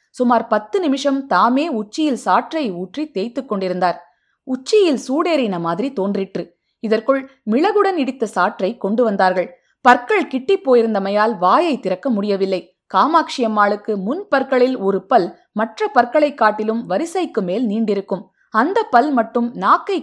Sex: female